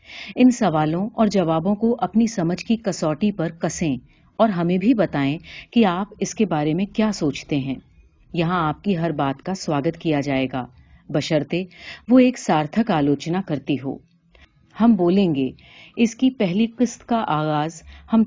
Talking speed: 150 wpm